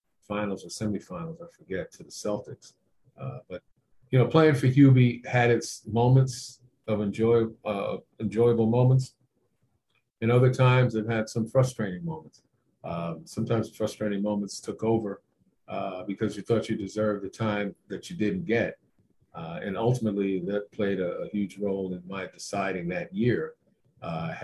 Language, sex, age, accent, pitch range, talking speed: English, male, 50-69, American, 100-125 Hz, 155 wpm